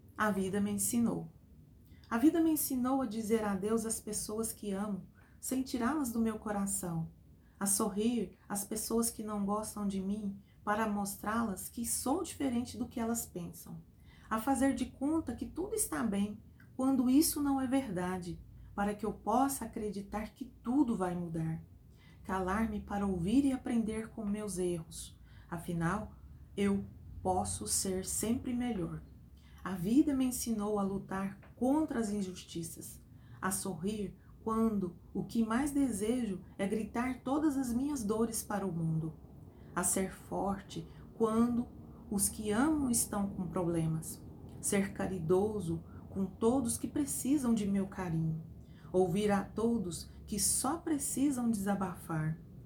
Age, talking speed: 30-49, 140 wpm